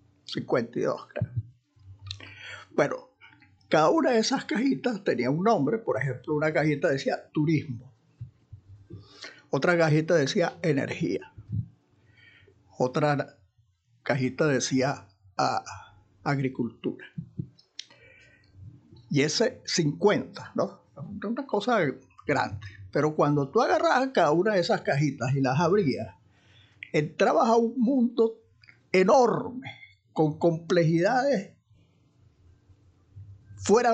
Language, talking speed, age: Spanish, 95 wpm, 50-69